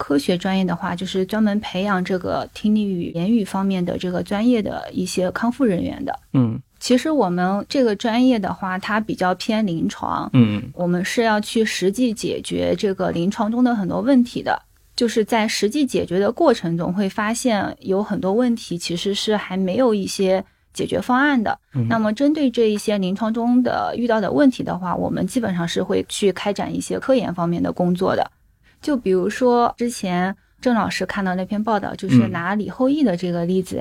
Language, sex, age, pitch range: Chinese, female, 20-39, 185-235 Hz